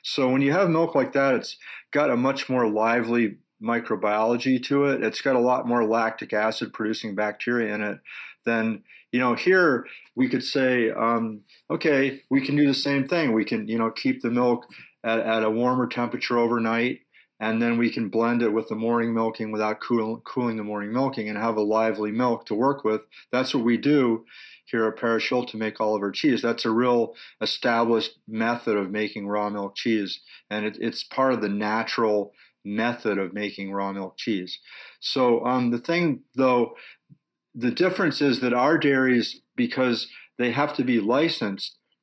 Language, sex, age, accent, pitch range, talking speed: English, male, 40-59, American, 110-130 Hz, 185 wpm